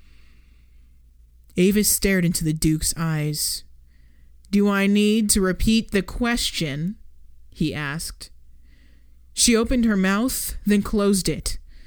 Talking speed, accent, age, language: 110 wpm, American, 20-39, English